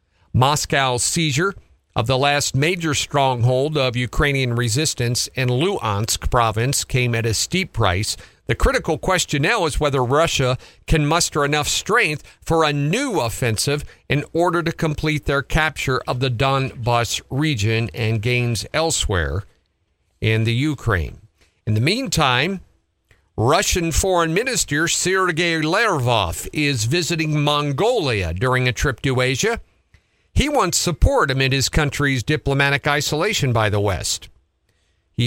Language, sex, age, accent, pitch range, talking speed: English, male, 50-69, American, 105-150 Hz, 130 wpm